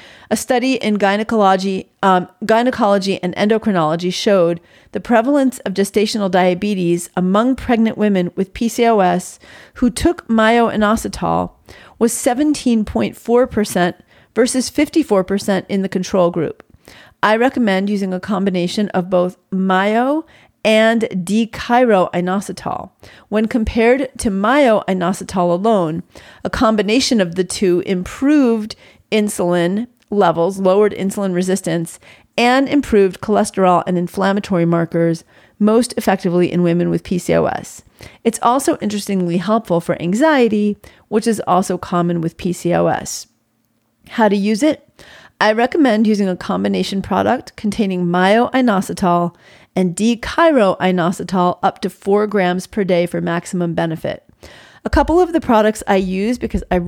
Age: 40-59